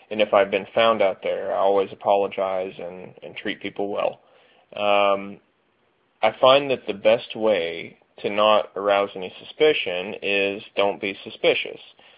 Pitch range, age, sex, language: 100-125 Hz, 20-39, male, English